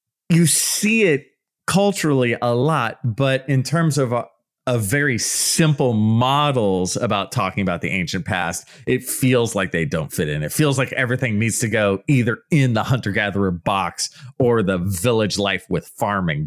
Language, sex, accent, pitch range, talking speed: English, male, American, 95-140 Hz, 170 wpm